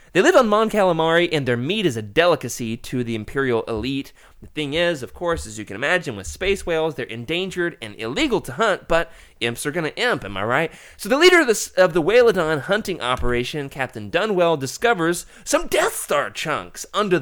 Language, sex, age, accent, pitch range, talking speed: English, male, 20-39, American, 125-195 Hz, 205 wpm